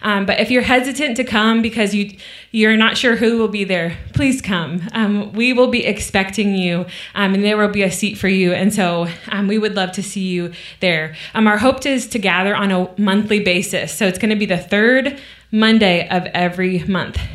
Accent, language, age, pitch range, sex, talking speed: American, English, 20-39, 190-250 Hz, female, 220 wpm